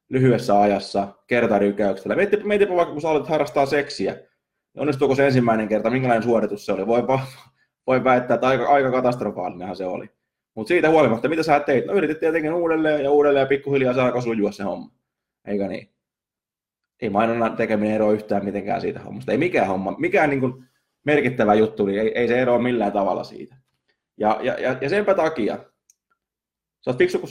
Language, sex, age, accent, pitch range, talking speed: Finnish, male, 20-39, native, 105-135 Hz, 175 wpm